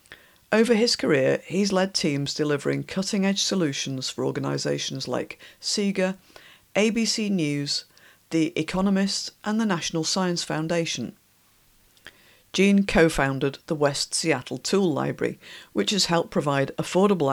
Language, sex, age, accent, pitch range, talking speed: English, female, 50-69, British, 140-185 Hz, 120 wpm